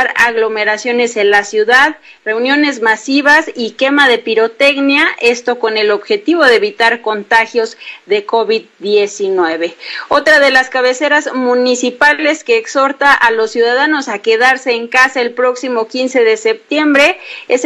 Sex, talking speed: female, 135 wpm